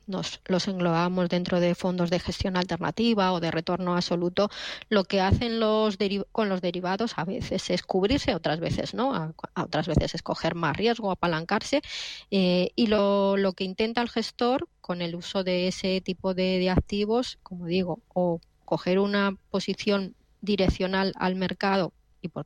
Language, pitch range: Spanish, 170-195 Hz